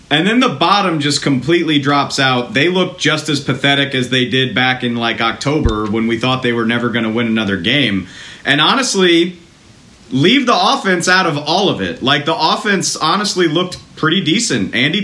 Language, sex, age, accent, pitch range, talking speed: English, male, 40-59, American, 125-170 Hz, 195 wpm